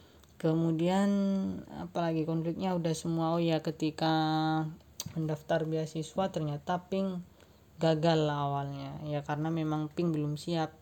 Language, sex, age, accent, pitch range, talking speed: Indonesian, female, 20-39, native, 150-165 Hz, 110 wpm